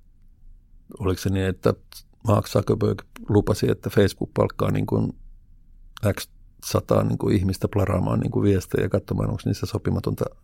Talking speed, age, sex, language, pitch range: 120 wpm, 50-69, male, Finnish, 95-110 Hz